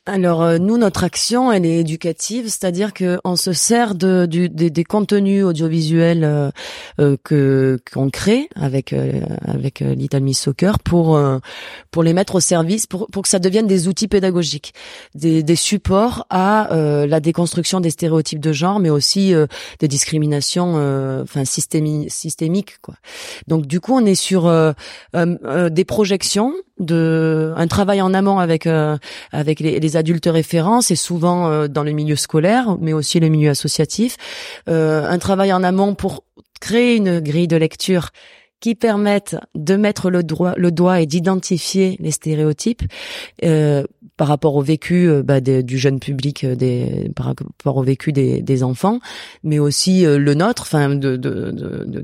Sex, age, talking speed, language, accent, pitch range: female, 30-49, 170 wpm, French, French, 150-195 Hz